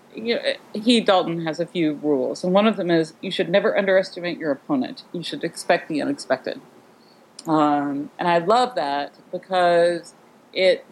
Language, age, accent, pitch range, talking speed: English, 40-59, American, 170-215 Hz, 170 wpm